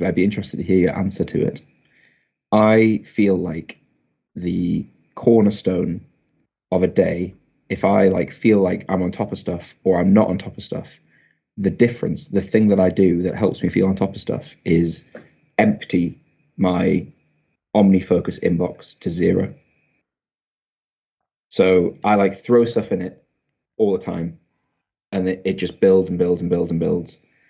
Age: 20-39